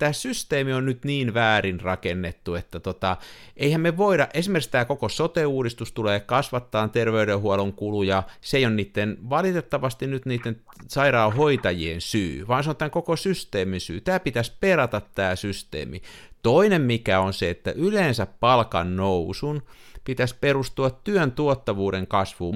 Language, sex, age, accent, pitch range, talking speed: Finnish, male, 50-69, native, 105-150 Hz, 145 wpm